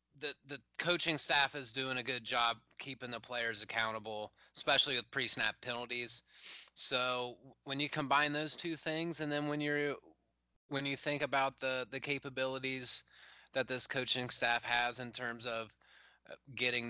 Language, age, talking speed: English, 20-39, 155 wpm